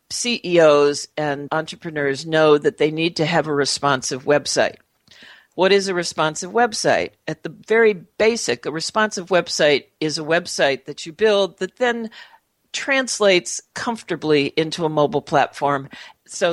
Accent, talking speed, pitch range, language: American, 140 wpm, 145-205 Hz, English